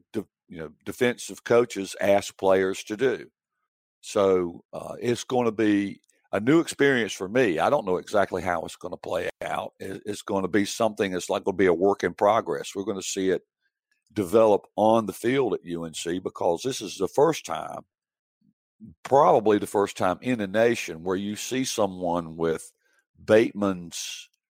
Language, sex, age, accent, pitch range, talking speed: English, male, 60-79, American, 95-120 Hz, 180 wpm